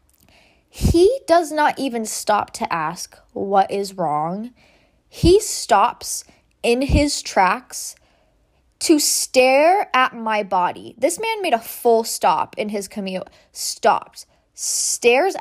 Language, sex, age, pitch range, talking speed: English, female, 10-29, 195-270 Hz, 120 wpm